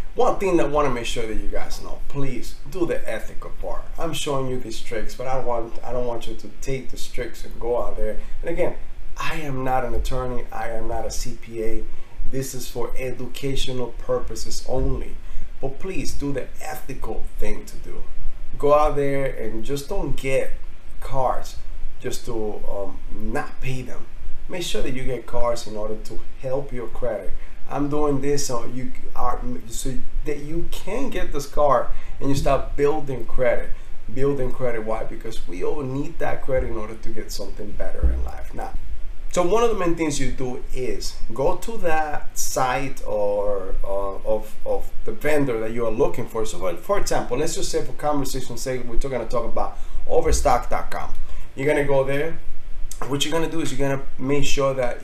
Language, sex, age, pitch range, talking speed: English, male, 30-49, 110-140 Hz, 200 wpm